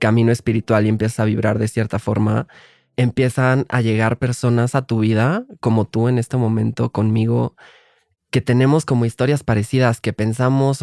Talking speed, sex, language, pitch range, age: 160 wpm, male, Spanish, 115-135 Hz, 20-39